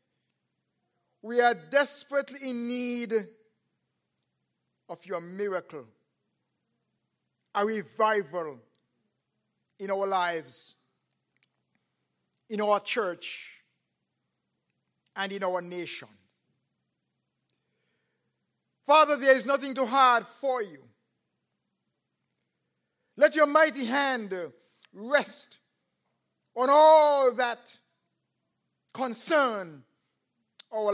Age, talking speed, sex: 50-69, 75 wpm, male